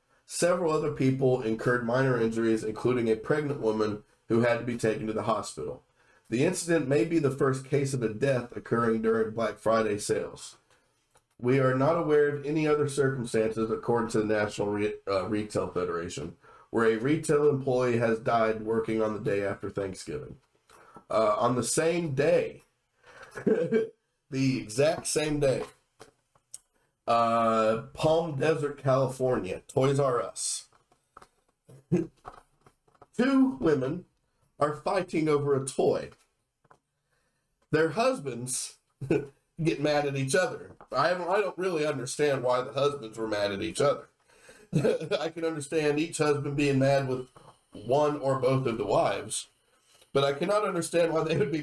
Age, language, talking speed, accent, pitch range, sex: 40-59, English, 145 wpm, American, 115-160 Hz, male